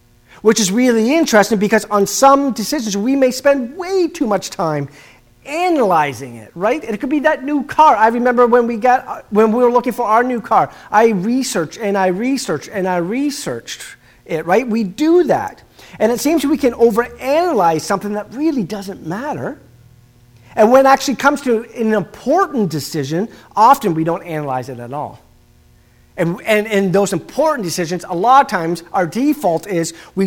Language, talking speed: English, 180 wpm